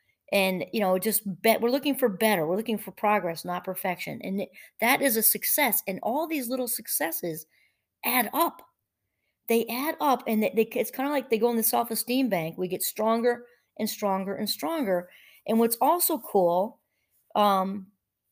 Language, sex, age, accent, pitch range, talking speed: English, female, 40-59, American, 195-255 Hz, 175 wpm